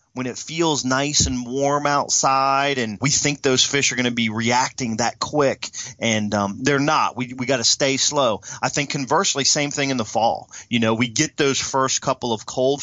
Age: 30-49